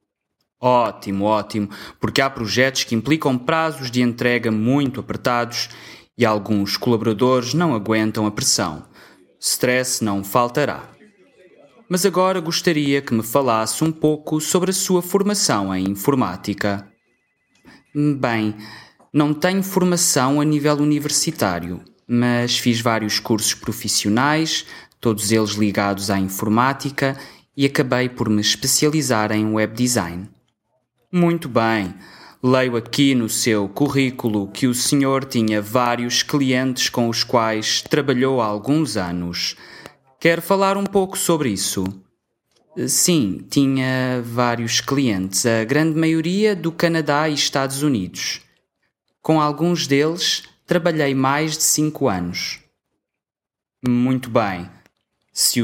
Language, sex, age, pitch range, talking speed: English, male, 20-39, 110-150 Hz, 120 wpm